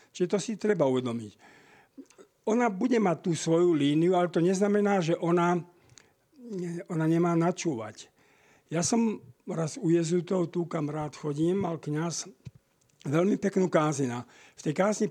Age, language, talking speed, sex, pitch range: 50-69, Slovak, 145 wpm, male, 150-185 Hz